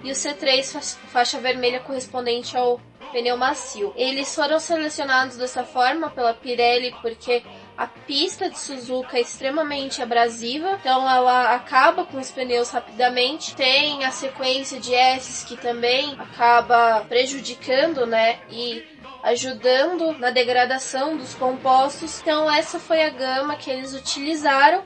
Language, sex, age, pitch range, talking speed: Portuguese, female, 10-29, 245-290 Hz, 135 wpm